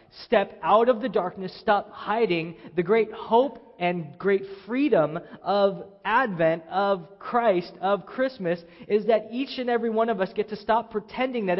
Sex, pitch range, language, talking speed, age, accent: male, 170-225 Hz, English, 165 wpm, 20-39, American